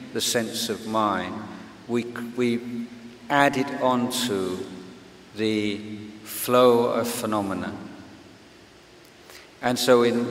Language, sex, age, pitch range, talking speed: English, male, 50-69, 105-125 Hz, 95 wpm